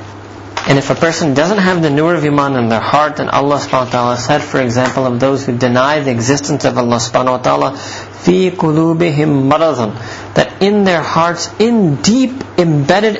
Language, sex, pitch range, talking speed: English, male, 125-170 Hz, 180 wpm